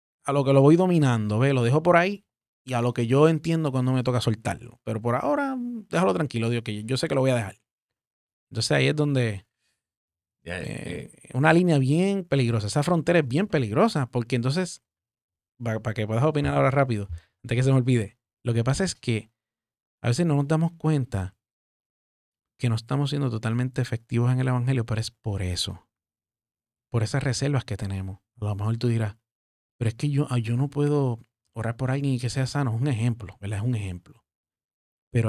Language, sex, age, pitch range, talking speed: Spanish, male, 30-49, 110-140 Hz, 200 wpm